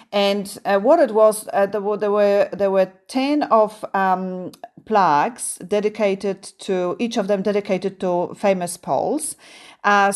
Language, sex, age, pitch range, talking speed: Polish, female, 40-59, 180-230 Hz, 140 wpm